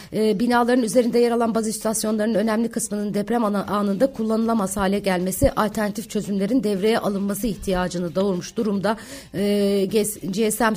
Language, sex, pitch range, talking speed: Turkish, female, 180-220 Hz, 125 wpm